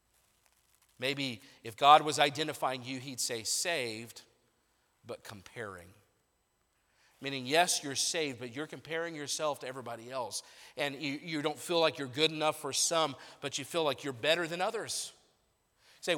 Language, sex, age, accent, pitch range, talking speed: English, male, 50-69, American, 140-190 Hz, 150 wpm